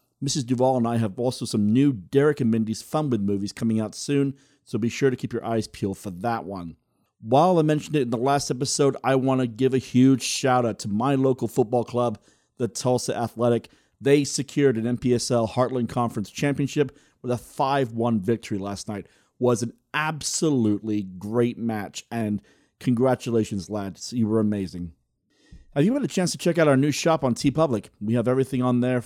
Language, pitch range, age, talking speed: English, 110-140 Hz, 40-59, 195 wpm